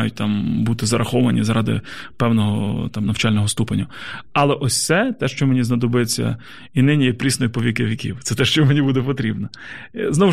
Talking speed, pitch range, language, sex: 170 wpm, 120-140 Hz, Ukrainian, male